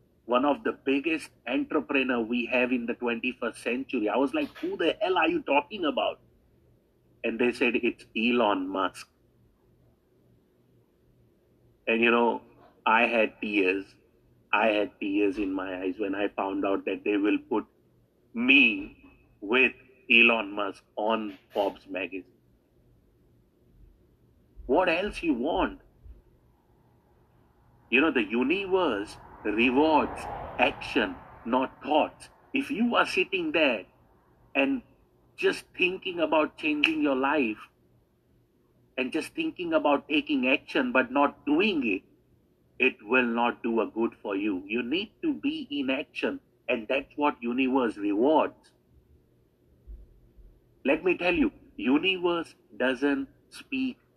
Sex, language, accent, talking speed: male, English, Indian, 125 wpm